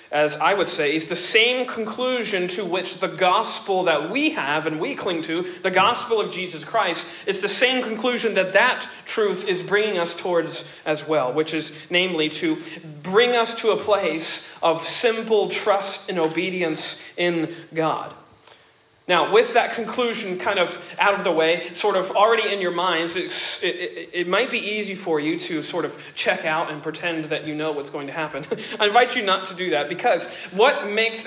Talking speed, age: 195 wpm, 40-59